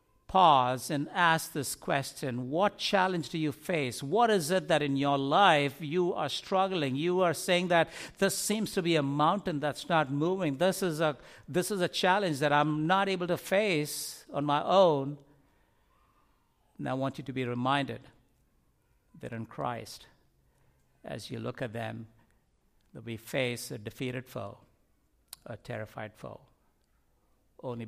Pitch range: 130-180 Hz